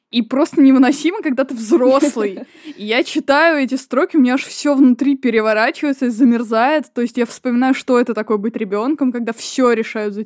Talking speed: 180 wpm